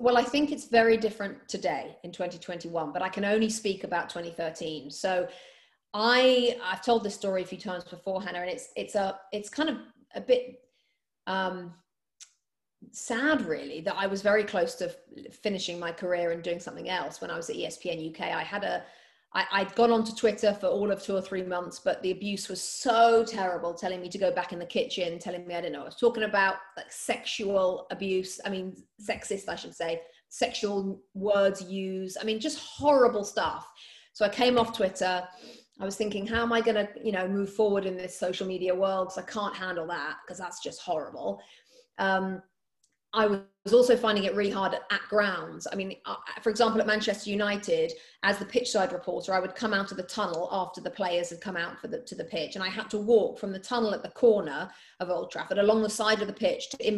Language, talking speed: English, 215 wpm